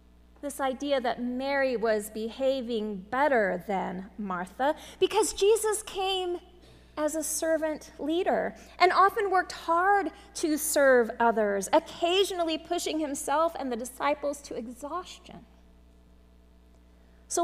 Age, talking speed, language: 30-49, 110 wpm, English